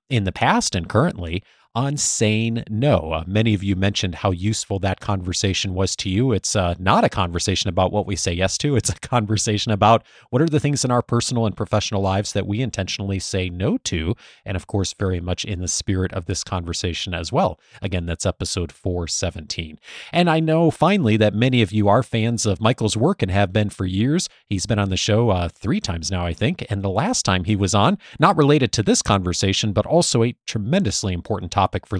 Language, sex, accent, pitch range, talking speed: English, male, American, 95-120 Hz, 220 wpm